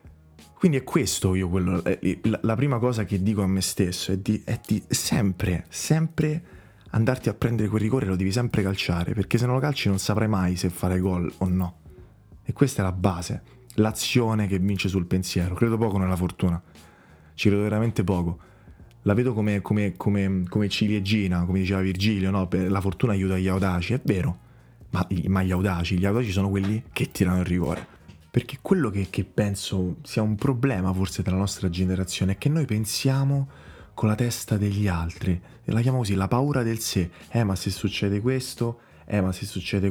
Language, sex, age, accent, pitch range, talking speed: Italian, male, 20-39, native, 95-115 Hz, 190 wpm